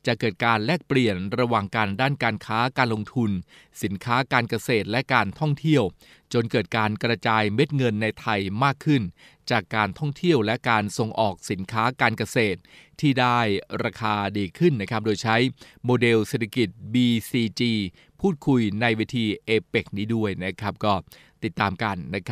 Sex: male